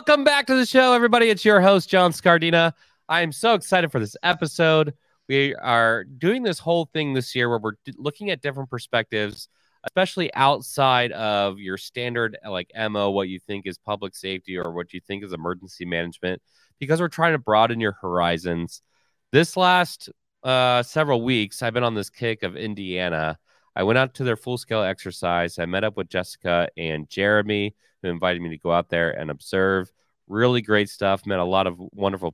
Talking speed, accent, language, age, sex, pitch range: 190 wpm, American, English, 30-49, male, 90-135 Hz